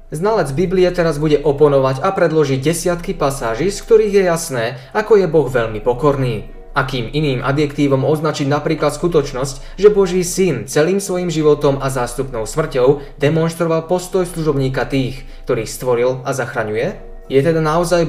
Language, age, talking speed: Slovak, 20-39, 145 wpm